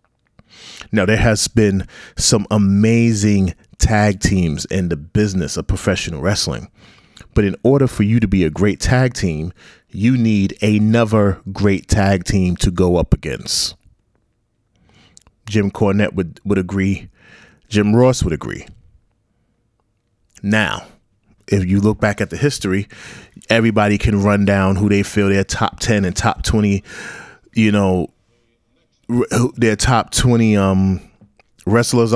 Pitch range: 95-115 Hz